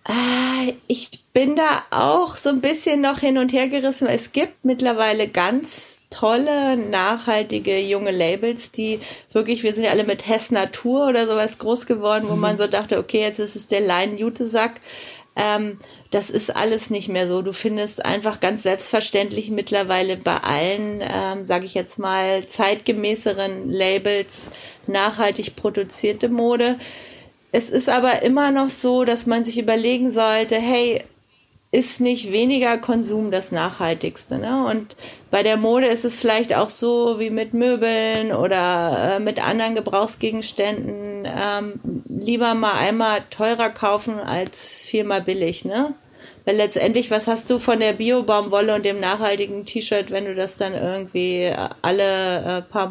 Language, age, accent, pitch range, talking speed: German, 30-49, German, 200-235 Hz, 145 wpm